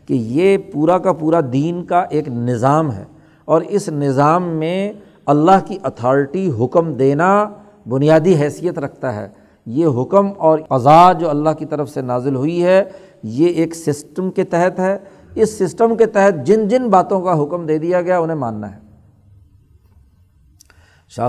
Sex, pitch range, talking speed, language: male, 135-190 Hz, 160 wpm, Urdu